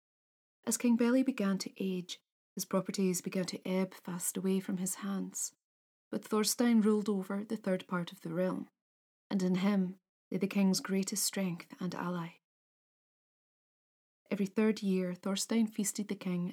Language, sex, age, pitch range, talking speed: English, female, 20-39, 185-220 Hz, 155 wpm